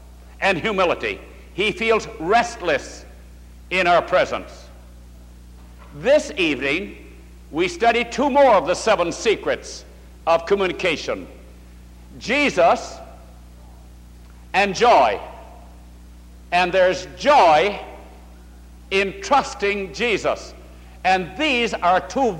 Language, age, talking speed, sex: English, 60-79, 90 wpm, male